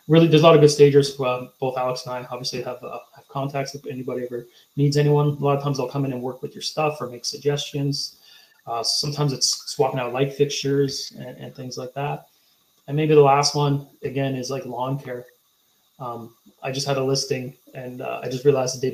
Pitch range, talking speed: 130-150 Hz, 230 wpm